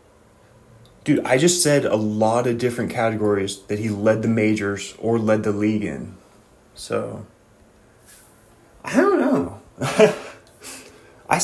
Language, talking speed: English, 125 wpm